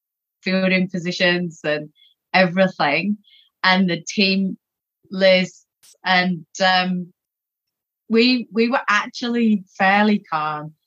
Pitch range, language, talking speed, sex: 170-195 Hz, English, 90 wpm, female